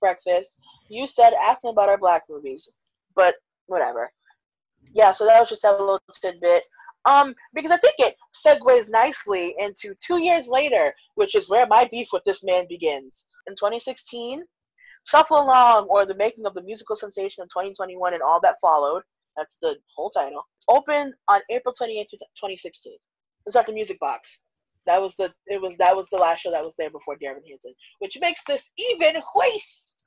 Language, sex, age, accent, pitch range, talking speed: English, female, 10-29, American, 190-275 Hz, 180 wpm